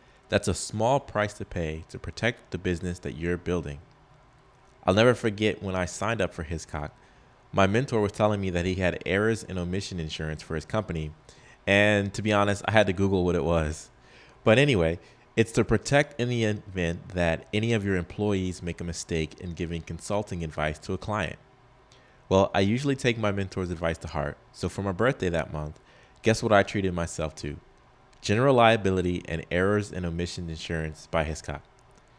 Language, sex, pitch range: English, male, 85-110 Hz